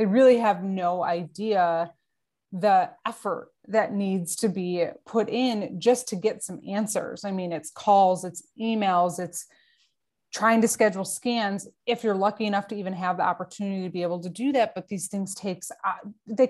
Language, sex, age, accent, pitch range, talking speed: English, female, 20-39, American, 180-220 Hz, 180 wpm